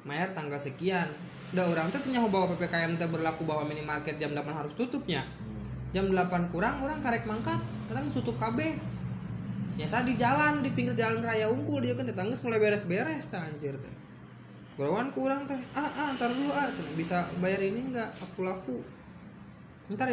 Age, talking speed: 20-39, 170 wpm